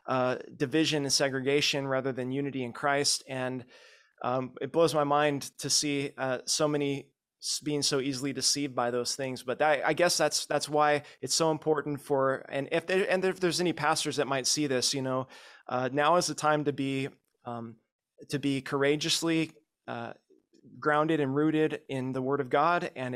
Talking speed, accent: 190 wpm, American